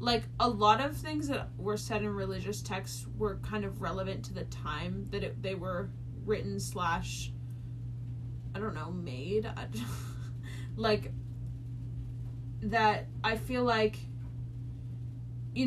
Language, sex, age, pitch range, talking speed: English, female, 20-39, 110-120 Hz, 135 wpm